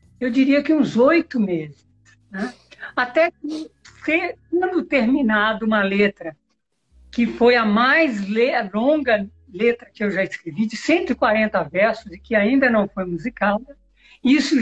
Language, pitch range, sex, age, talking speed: Portuguese, 185-255 Hz, female, 60-79, 130 wpm